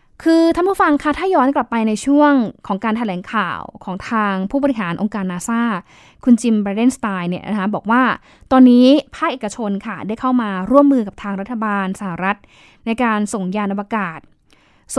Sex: female